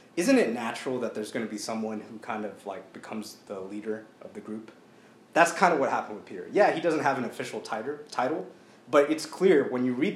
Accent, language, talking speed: American, English, 235 wpm